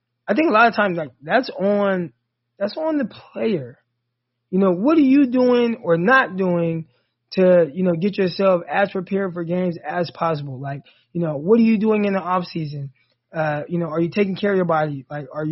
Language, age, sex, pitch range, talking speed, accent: English, 20-39, male, 150-200 Hz, 215 wpm, American